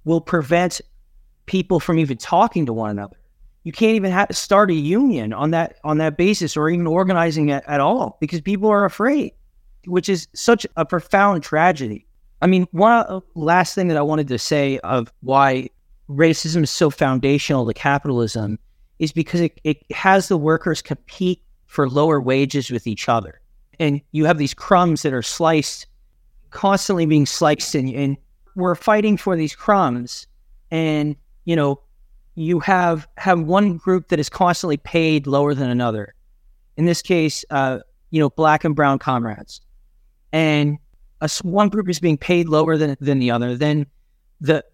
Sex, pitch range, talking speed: male, 140-180 Hz, 170 wpm